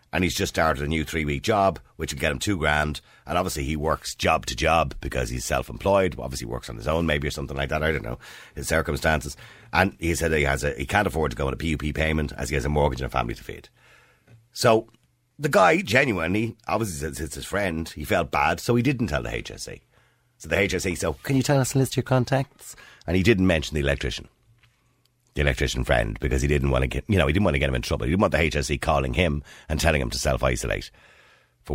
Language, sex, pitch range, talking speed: English, male, 70-95 Hz, 255 wpm